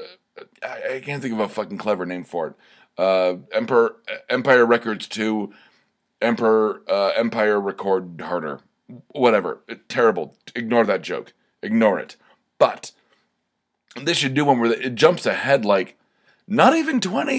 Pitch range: 115-170 Hz